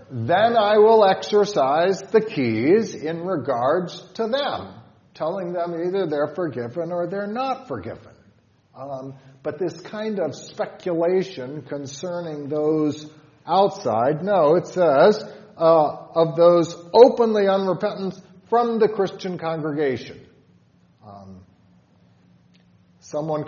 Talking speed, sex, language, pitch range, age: 105 wpm, male, English, 130-180 Hz, 50-69